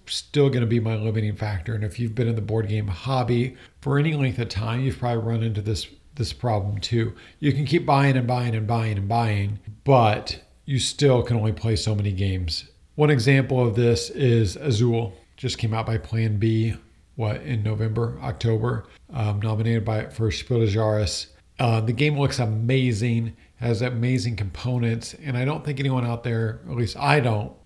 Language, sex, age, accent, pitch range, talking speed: English, male, 40-59, American, 110-130 Hz, 190 wpm